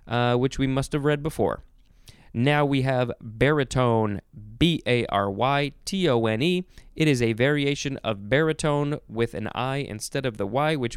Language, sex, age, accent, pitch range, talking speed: English, male, 20-39, American, 115-145 Hz, 140 wpm